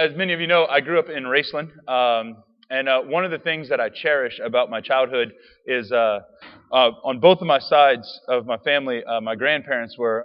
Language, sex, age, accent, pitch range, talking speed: English, male, 30-49, American, 125-155 Hz, 220 wpm